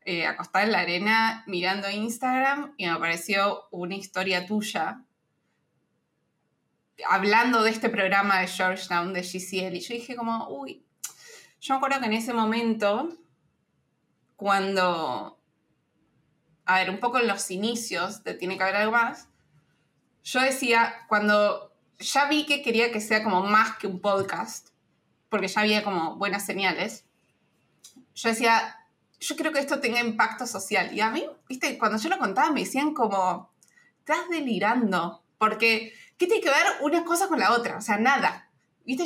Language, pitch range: Spanish, 195-275 Hz